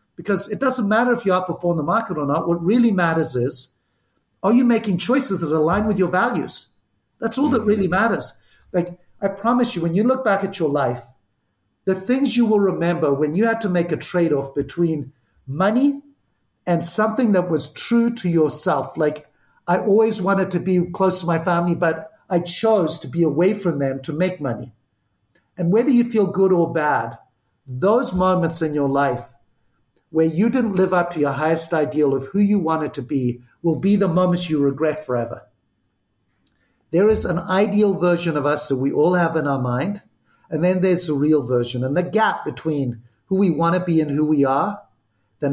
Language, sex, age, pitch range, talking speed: English, male, 50-69, 145-200 Hz, 200 wpm